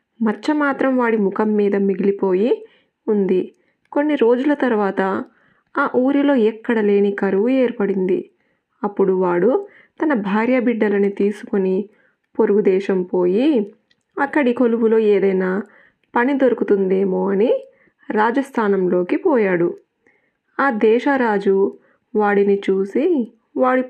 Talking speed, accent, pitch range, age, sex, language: 95 wpm, native, 195-255 Hz, 20-39, female, Telugu